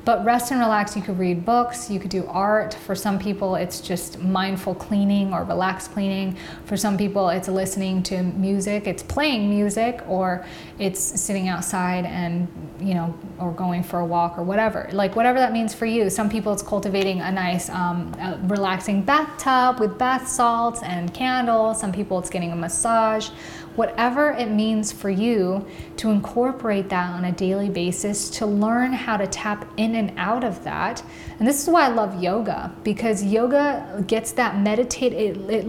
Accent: American